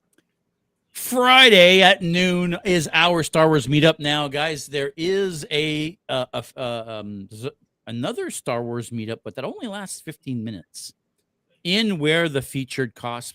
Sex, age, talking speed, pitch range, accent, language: male, 40-59, 145 wpm, 115-155 Hz, American, English